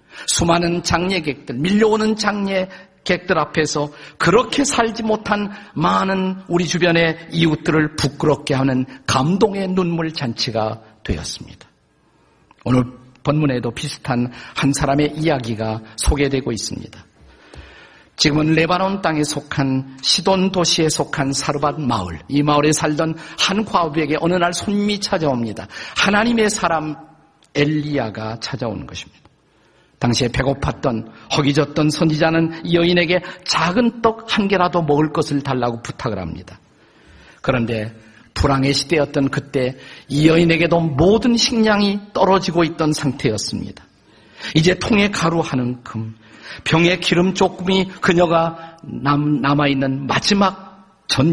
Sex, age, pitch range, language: male, 50-69, 135-185 Hz, Korean